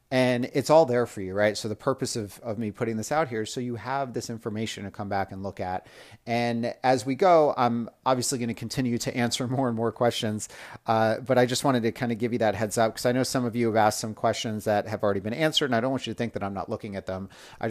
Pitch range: 105-130 Hz